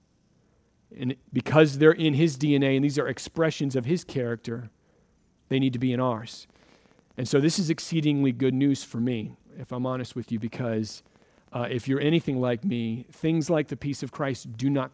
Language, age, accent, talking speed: English, 40-59, American, 195 wpm